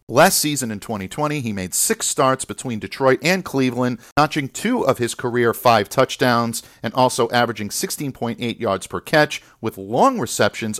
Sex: male